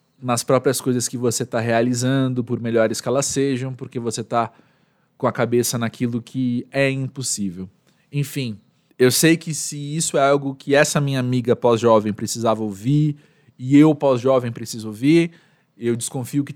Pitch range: 115-145 Hz